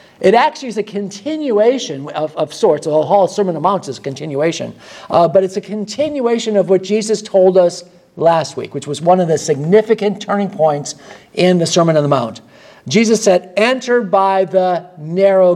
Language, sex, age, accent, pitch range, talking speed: English, male, 50-69, American, 165-205 Hz, 190 wpm